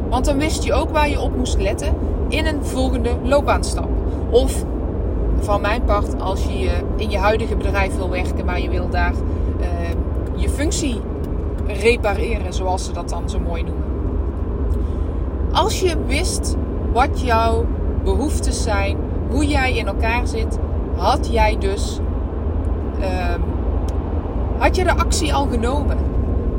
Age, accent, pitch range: 20-39, Dutch, 80-85 Hz